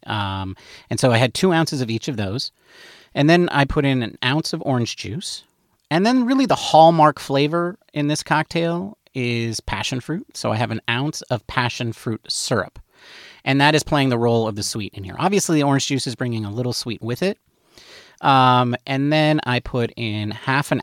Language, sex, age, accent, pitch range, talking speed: English, male, 30-49, American, 105-145 Hz, 205 wpm